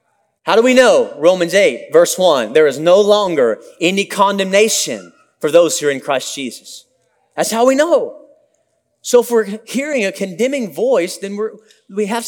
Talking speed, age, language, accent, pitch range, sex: 175 wpm, 30-49, English, American, 210-295 Hz, male